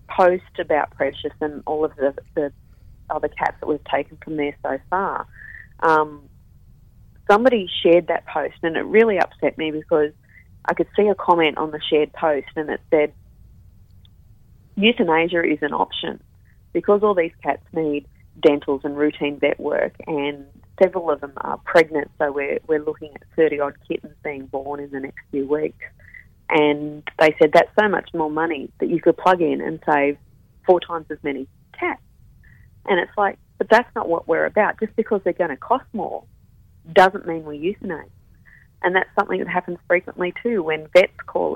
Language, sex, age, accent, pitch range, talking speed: English, female, 30-49, Australian, 145-180 Hz, 180 wpm